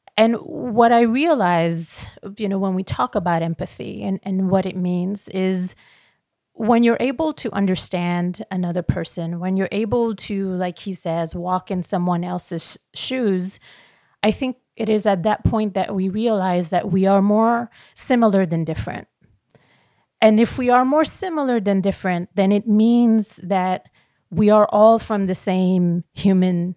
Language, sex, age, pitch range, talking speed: English, female, 30-49, 180-215 Hz, 160 wpm